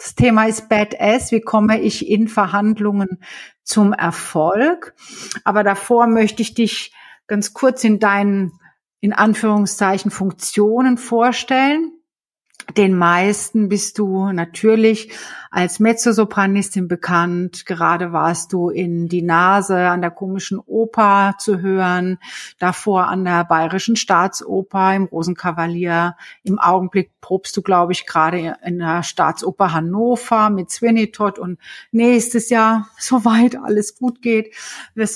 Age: 50-69